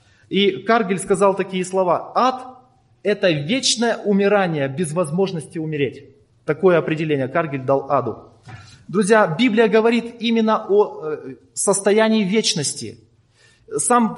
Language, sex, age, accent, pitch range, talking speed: Russian, male, 20-39, native, 170-230 Hz, 105 wpm